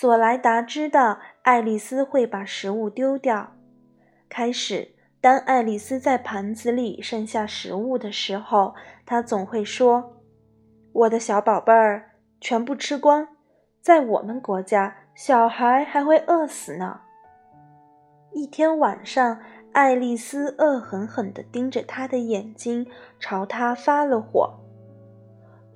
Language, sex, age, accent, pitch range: Chinese, female, 20-39, native, 205-275 Hz